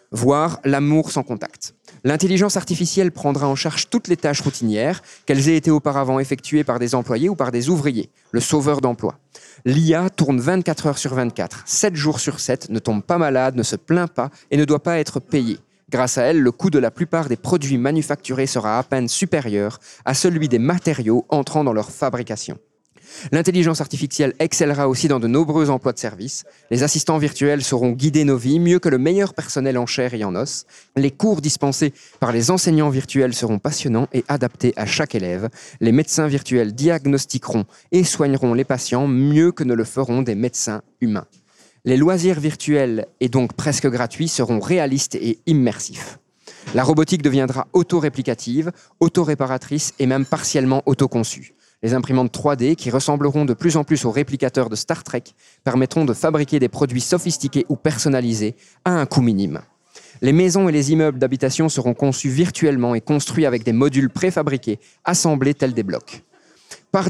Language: French